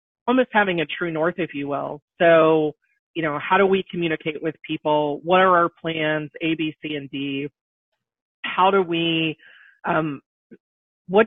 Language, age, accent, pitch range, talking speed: English, 30-49, American, 145-170 Hz, 165 wpm